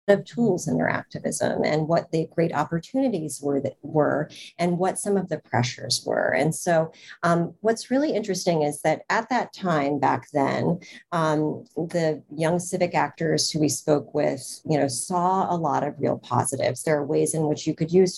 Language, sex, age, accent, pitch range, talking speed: English, female, 40-59, American, 155-190 Hz, 190 wpm